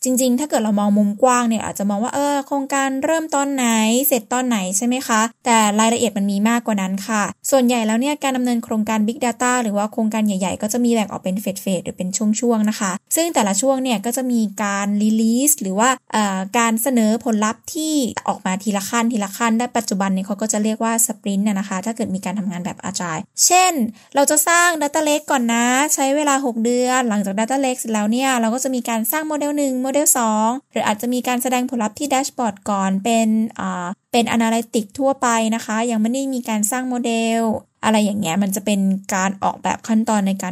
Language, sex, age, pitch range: Thai, female, 10-29, 215-260 Hz